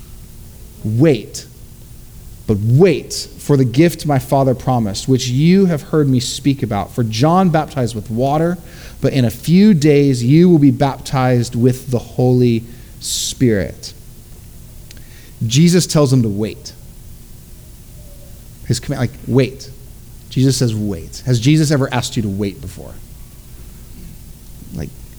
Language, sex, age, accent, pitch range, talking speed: English, male, 30-49, American, 115-135 Hz, 125 wpm